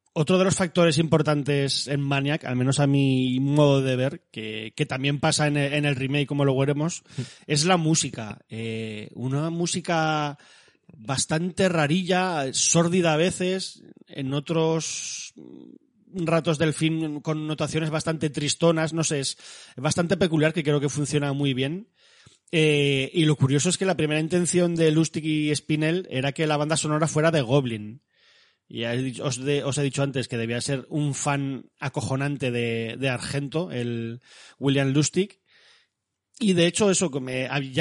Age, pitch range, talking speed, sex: 30-49, 135-175 Hz, 155 wpm, male